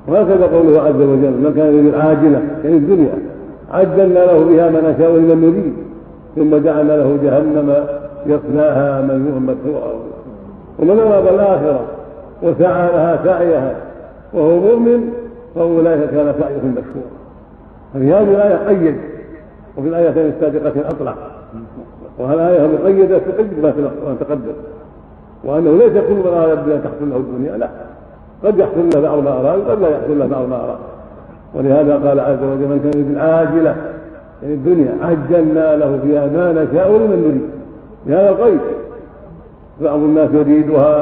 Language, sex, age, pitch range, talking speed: Arabic, male, 50-69, 140-165 Hz, 135 wpm